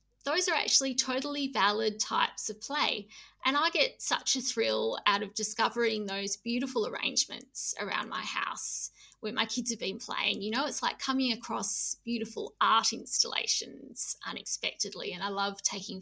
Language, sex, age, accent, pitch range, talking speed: English, female, 20-39, Australian, 215-280 Hz, 160 wpm